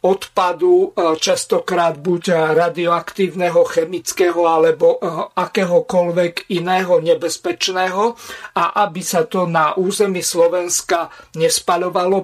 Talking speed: 85 wpm